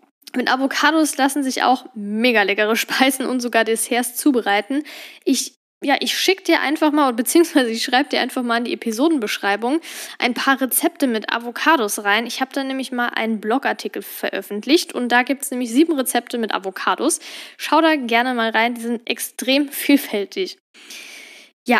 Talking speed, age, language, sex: 165 wpm, 10-29, German, female